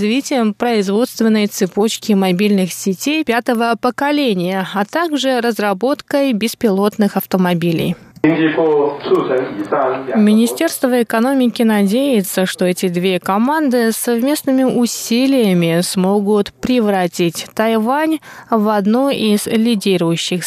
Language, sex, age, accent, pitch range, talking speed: Russian, female, 20-39, native, 185-250 Hz, 80 wpm